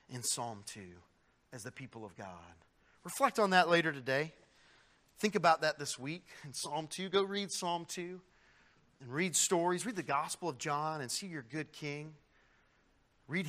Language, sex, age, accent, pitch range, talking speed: English, male, 40-59, American, 125-165 Hz, 175 wpm